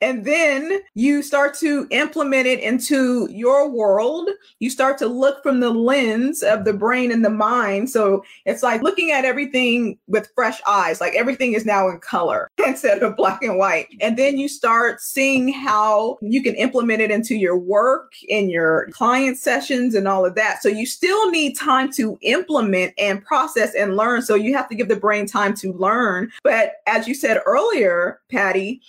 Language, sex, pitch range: English, female, 215-290 Hz